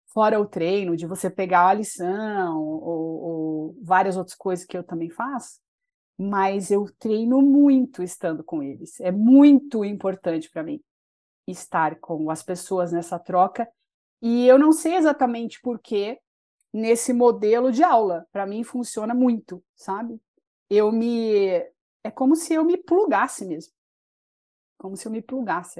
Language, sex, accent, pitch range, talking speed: Portuguese, female, Brazilian, 180-245 Hz, 150 wpm